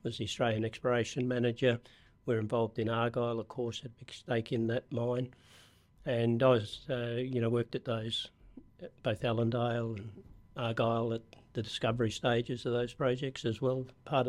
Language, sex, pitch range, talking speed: English, male, 115-130 Hz, 175 wpm